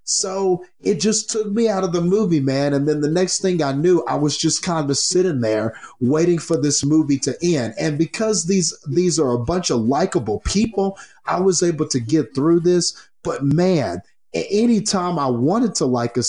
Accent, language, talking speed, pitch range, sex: American, English, 205 wpm, 135-180 Hz, male